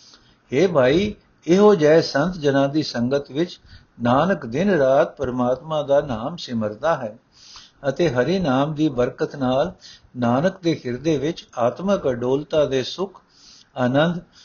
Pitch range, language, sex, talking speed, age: 120-170 Hz, Punjabi, male, 135 wpm, 60-79